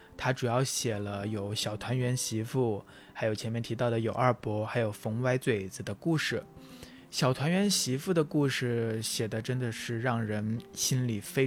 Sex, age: male, 20-39